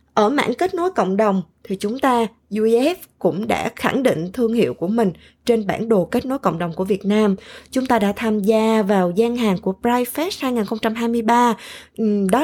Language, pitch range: Vietnamese, 195-245 Hz